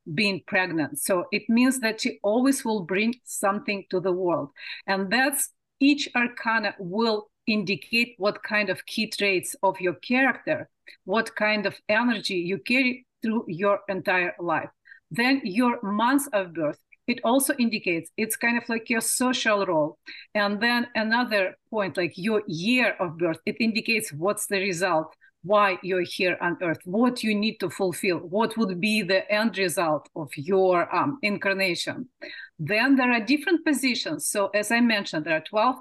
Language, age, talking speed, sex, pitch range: English, 40-59, 165 wpm, female, 190-250 Hz